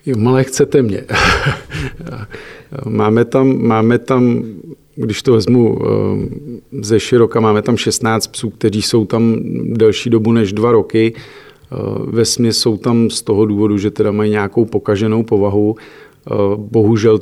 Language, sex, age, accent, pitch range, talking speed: Czech, male, 50-69, native, 105-115 Hz, 125 wpm